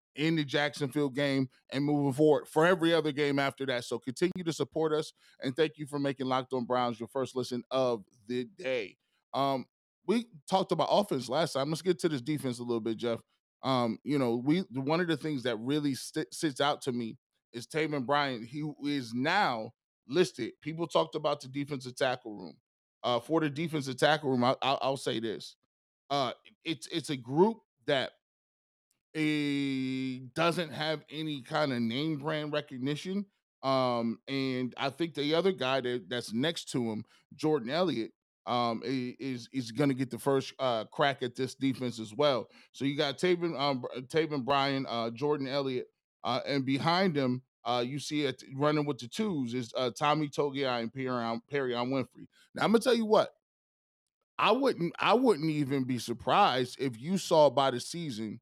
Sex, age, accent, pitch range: male, 20-39, American, 125-155 Hz